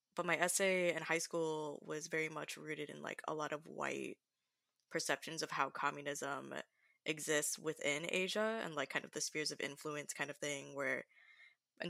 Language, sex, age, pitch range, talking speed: English, female, 20-39, 150-185 Hz, 180 wpm